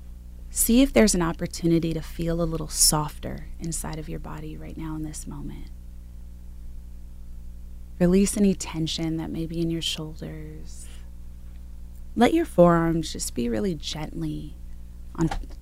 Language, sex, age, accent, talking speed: English, female, 30-49, American, 140 wpm